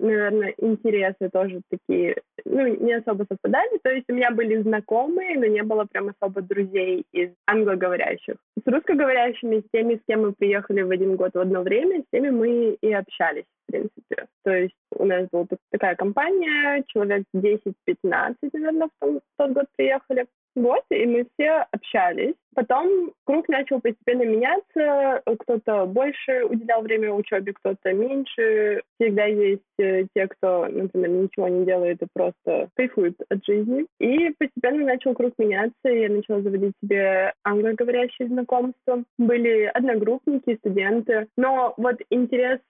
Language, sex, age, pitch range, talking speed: Russian, female, 20-39, 205-260 Hz, 150 wpm